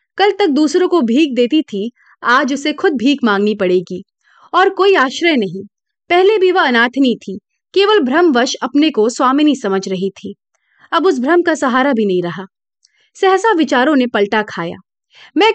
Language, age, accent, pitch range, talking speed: Hindi, 30-49, native, 215-340 Hz, 110 wpm